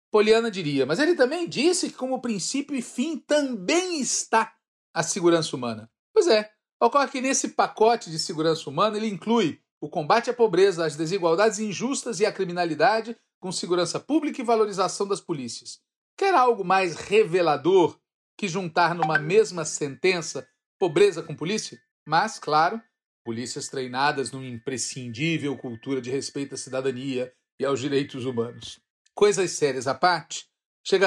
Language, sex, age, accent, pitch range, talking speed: Portuguese, male, 40-59, Brazilian, 145-235 Hz, 145 wpm